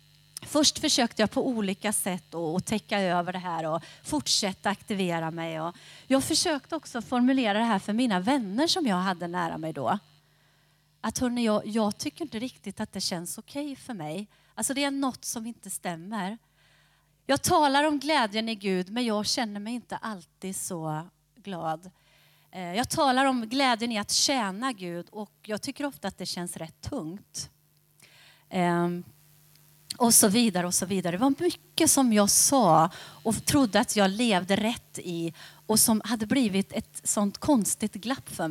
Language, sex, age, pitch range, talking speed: Swedish, female, 30-49, 180-255 Hz, 170 wpm